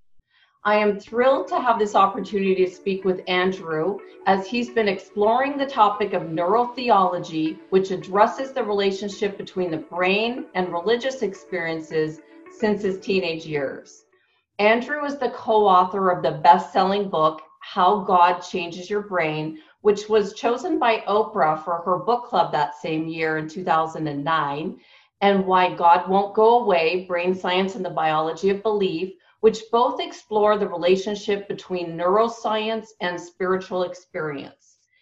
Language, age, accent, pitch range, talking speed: English, 40-59, American, 175-215 Hz, 140 wpm